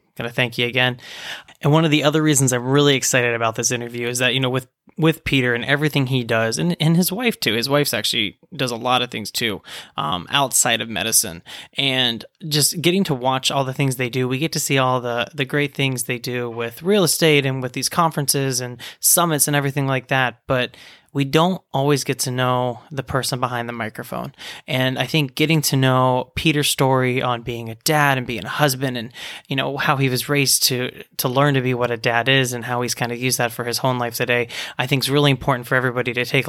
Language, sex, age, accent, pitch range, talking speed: English, male, 20-39, American, 125-145 Hz, 235 wpm